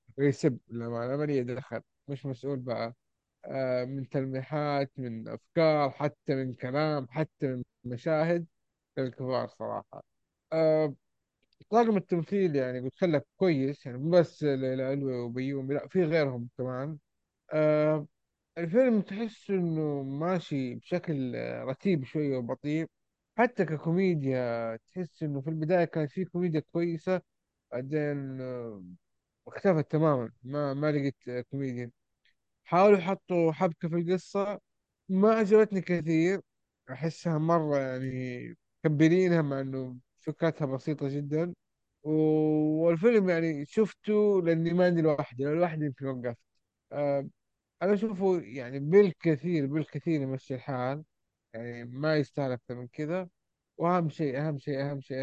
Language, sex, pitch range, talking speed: Arabic, male, 130-170 Hz, 115 wpm